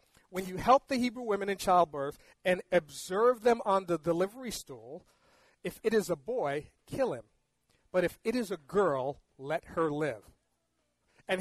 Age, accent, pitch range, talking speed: 40-59, American, 160-210 Hz, 170 wpm